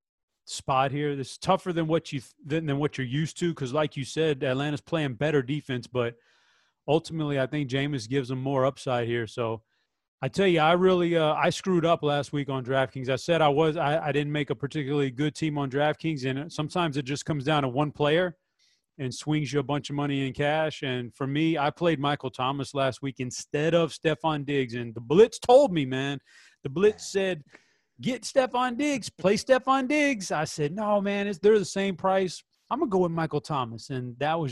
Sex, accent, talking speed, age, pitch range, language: male, American, 215 wpm, 30-49, 135-165 Hz, English